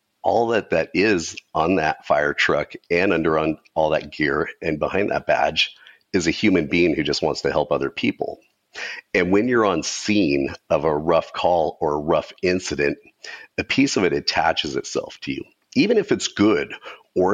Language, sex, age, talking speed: English, male, 40-59, 190 wpm